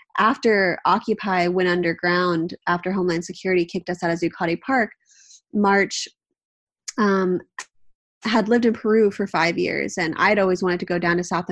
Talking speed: 160 wpm